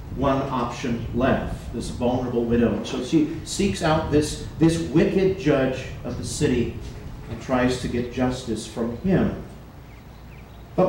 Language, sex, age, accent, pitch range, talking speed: English, male, 40-59, American, 120-160 Hz, 140 wpm